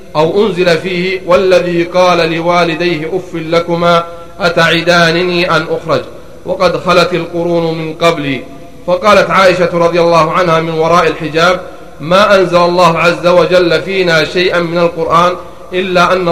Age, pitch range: 40-59, 165-180 Hz